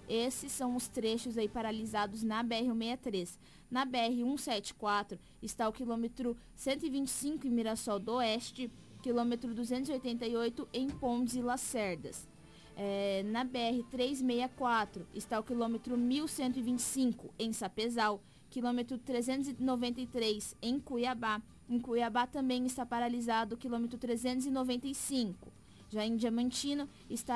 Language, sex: Portuguese, female